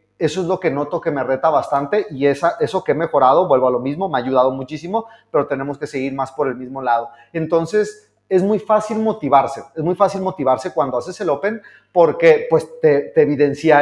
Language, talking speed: Spanish, 215 wpm